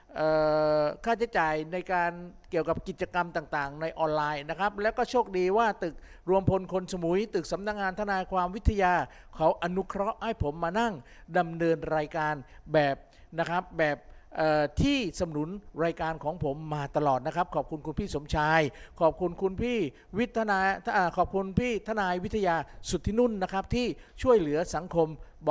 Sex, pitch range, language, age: male, 160-215 Hz, Thai, 60-79